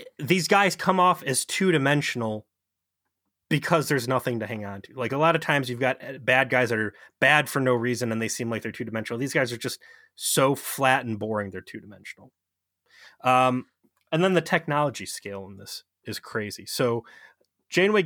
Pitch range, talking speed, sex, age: 110-135 Hz, 185 wpm, male, 20-39